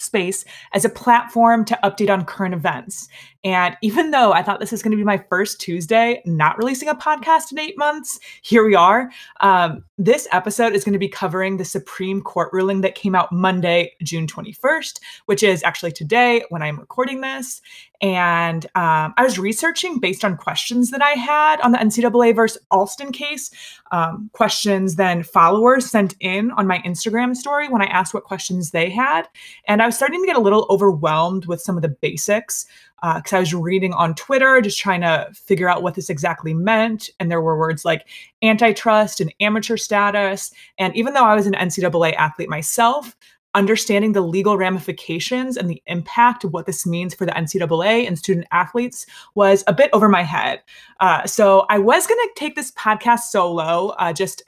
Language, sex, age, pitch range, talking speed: English, female, 20-39, 175-230 Hz, 190 wpm